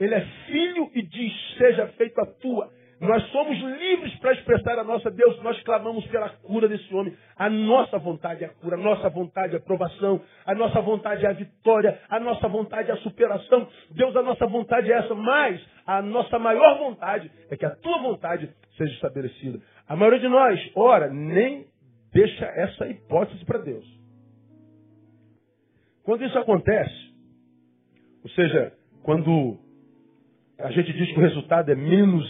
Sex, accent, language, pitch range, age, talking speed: male, Brazilian, Portuguese, 135-230 Hz, 40-59, 165 wpm